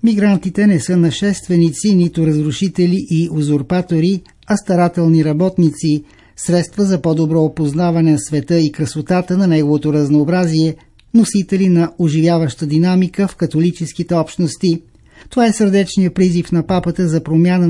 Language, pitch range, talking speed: Bulgarian, 155-185 Hz, 125 wpm